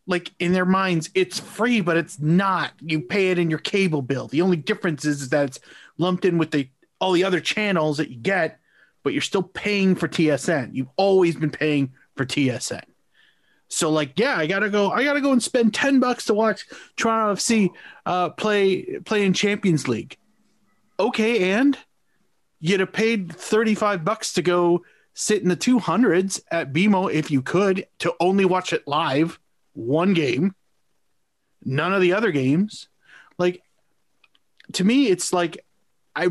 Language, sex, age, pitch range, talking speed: English, male, 30-49, 155-205 Hz, 175 wpm